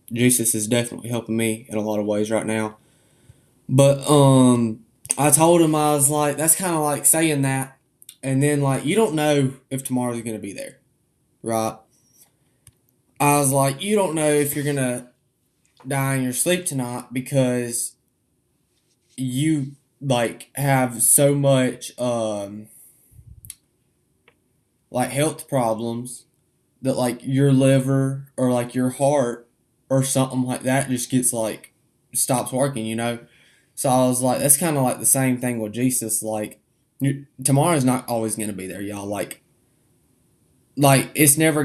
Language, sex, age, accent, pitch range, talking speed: English, male, 10-29, American, 115-135 Hz, 155 wpm